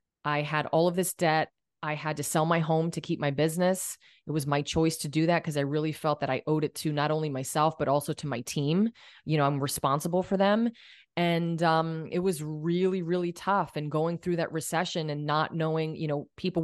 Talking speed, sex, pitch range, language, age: 230 wpm, female, 150-175 Hz, English, 30-49